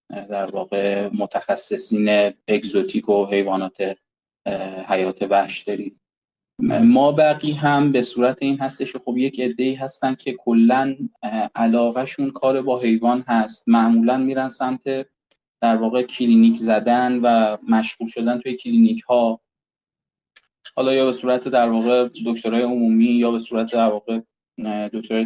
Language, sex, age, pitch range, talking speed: Persian, male, 20-39, 110-125 Hz, 130 wpm